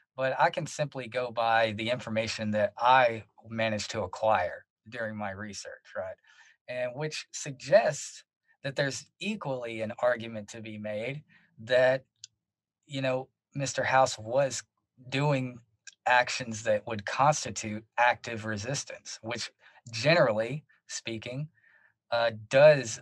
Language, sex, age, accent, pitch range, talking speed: English, male, 20-39, American, 110-135 Hz, 120 wpm